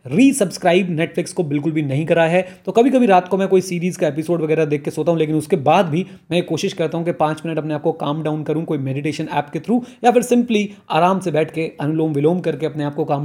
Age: 30-49